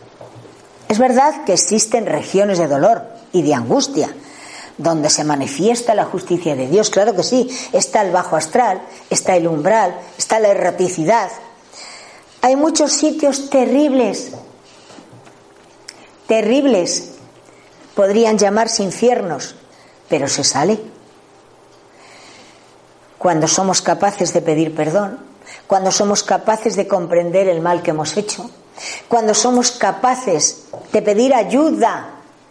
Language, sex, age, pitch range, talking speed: Spanish, female, 40-59, 180-240 Hz, 115 wpm